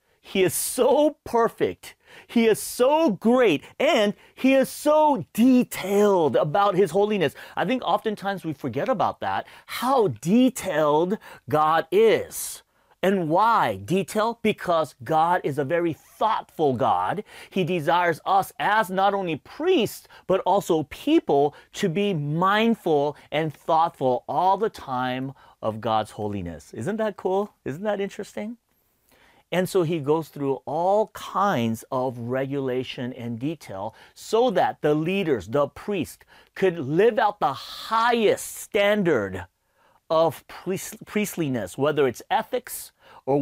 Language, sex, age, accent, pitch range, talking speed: English, male, 30-49, American, 130-205 Hz, 130 wpm